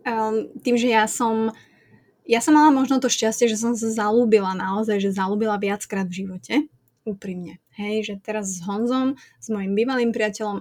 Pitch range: 210-235 Hz